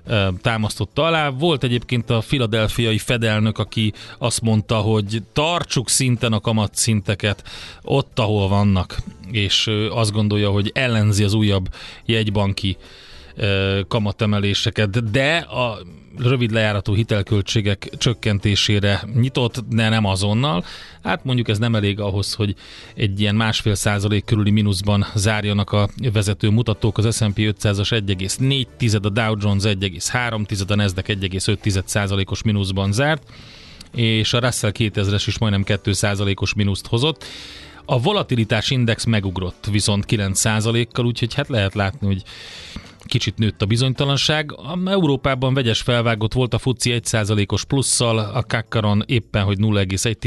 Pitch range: 100-120 Hz